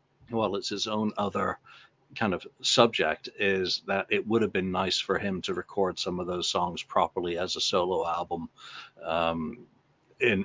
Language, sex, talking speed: English, male, 170 wpm